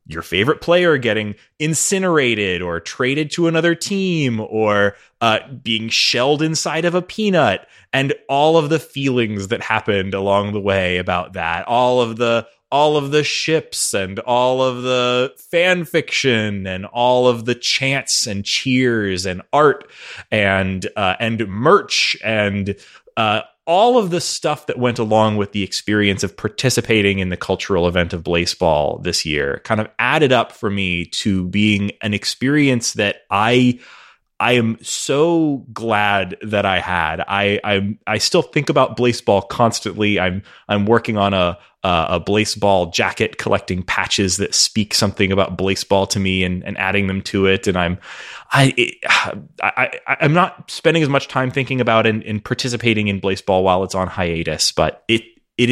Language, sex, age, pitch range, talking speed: English, male, 20-39, 95-125 Hz, 165 wpm